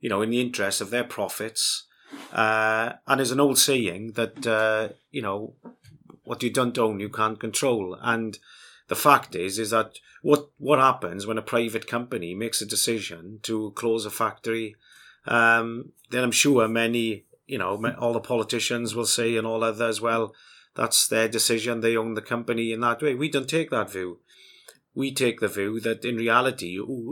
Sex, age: male, 30-49